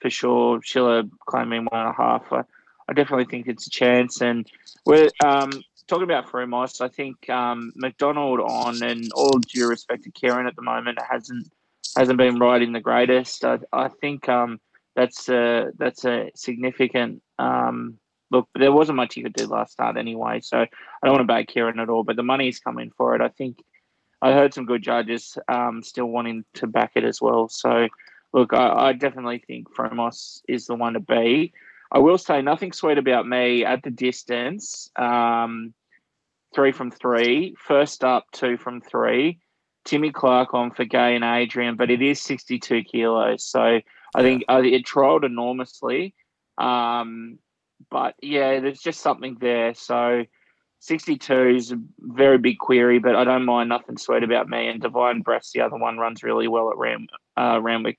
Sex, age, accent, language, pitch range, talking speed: male, 20-39, Australian, English, 120-130 Hz, 180 wpm